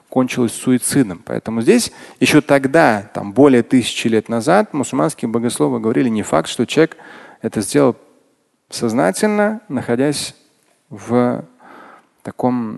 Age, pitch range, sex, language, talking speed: 30-49, 120-155 Hz, male, Russian, 115 wpm